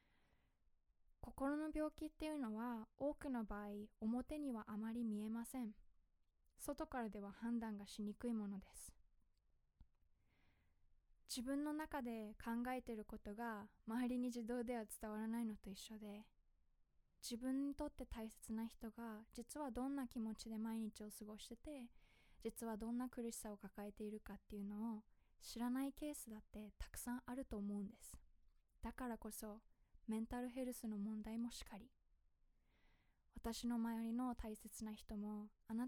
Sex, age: female, 20-39